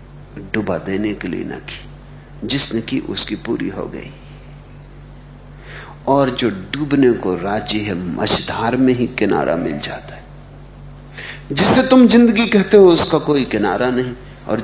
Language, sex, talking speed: Hindi, male, 145 wpm